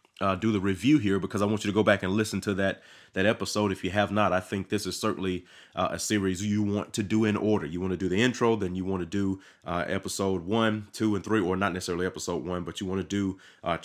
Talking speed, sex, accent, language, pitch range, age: 275 wpm, male, American, English, 90-105 Hz, 30-49